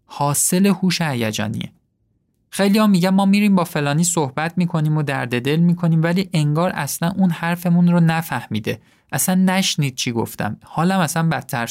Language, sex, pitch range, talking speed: Persian, male, 125-175 Hz, 155 wpm